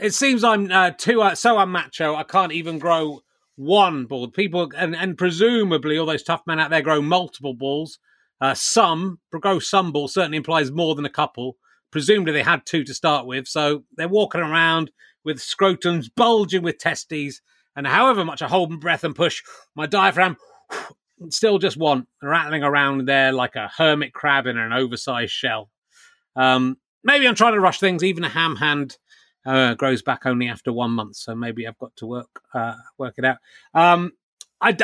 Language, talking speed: English, 190 wpm